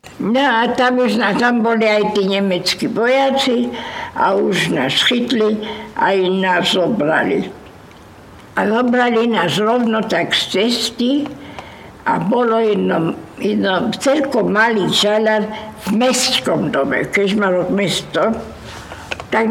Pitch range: 195-240 Hz